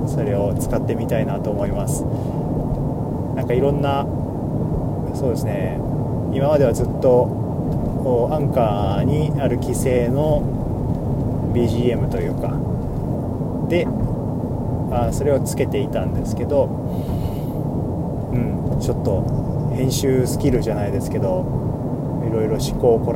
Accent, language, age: native, Japanese, 20-39